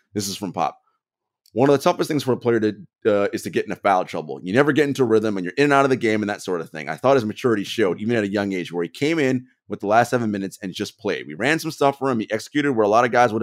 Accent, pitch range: American, 95-140 Hz